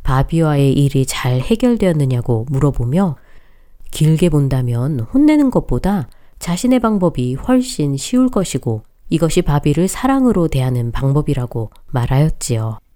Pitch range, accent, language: 125-180 Hz, native, Korean